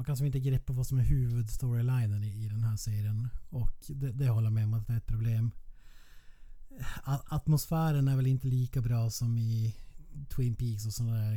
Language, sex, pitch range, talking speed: Swedish, male, 110-130 Hz, 205 wpm